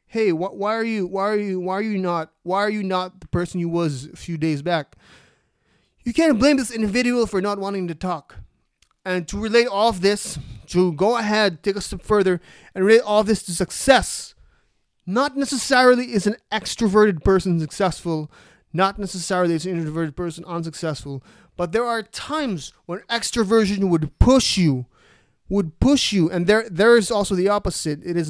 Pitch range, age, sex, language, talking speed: 170-220 Hz, 20-39, male, English, 190 wpm